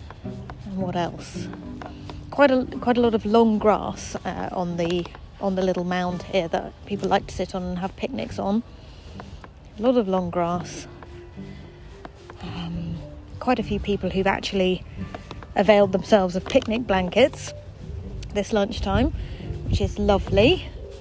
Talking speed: 145 wpm